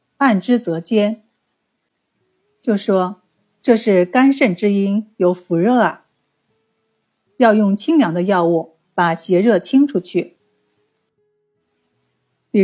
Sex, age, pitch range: female, 50-69, 180-230 Hz